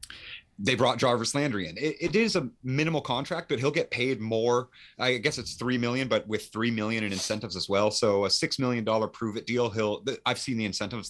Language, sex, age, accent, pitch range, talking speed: English, male, 30-49, American, 95-120 Hz, 225 wpm